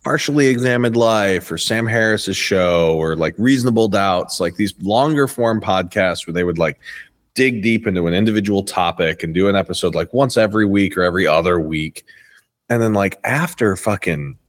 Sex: male